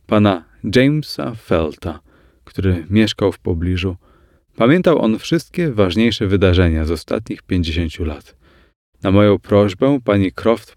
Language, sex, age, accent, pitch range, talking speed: Polish, male, 30-49, native, 80-120 Hz, 115 wpm